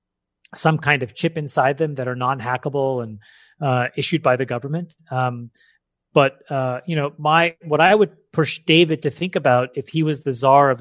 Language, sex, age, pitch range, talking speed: English, male, 30-49, 130-150 Hz, 200 wpm